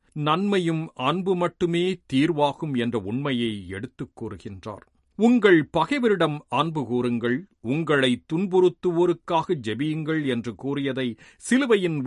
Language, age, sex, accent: Tamil, 40-59, male, native